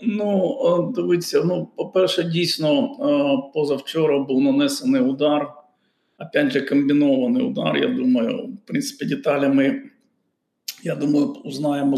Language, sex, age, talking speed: Ukrainian, male, 50-69, 110 wpm